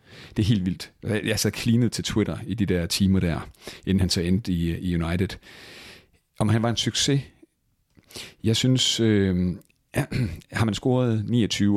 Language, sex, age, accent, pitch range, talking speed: Danish, male, 40-59, native, 90-110 Hz, 185 wpm